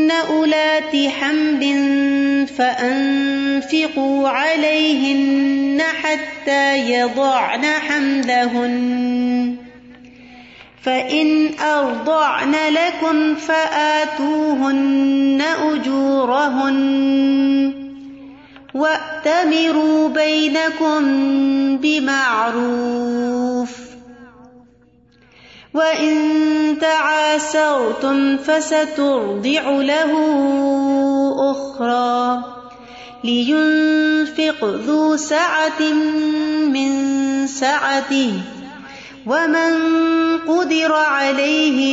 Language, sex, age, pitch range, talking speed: Urdu, female, 30-49, 270-310 Hz, 40 wpm